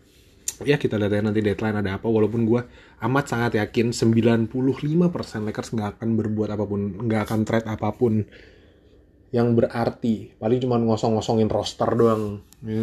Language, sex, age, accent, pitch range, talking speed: Indonesian, male, 20-39, native, 100-120 Hz, 145 wpm